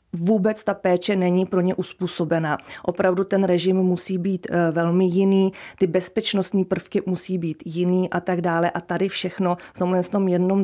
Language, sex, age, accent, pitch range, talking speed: Czech, female, 30-49, native, 175-190 Hz, 165 wpm